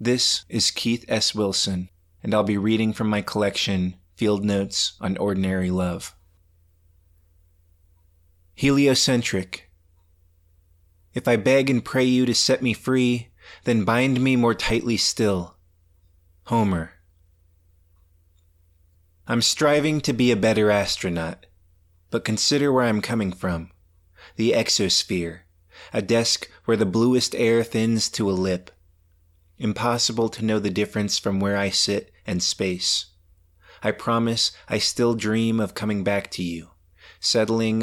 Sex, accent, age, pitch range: male, American, 30-49, 85-110 Hz